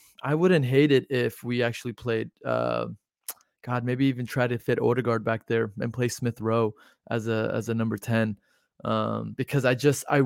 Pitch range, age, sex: 110-125 Hz, 20-39, male